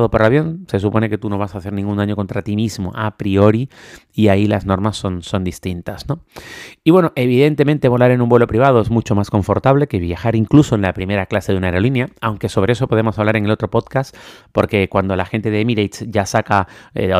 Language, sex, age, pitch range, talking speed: Spanish, male, 30-49, 95-115 Hz, 225 wpm